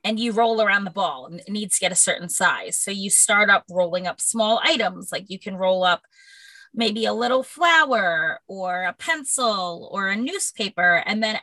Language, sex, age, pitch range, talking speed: English, female, 20-39, 175-230 Hz, 205 wpm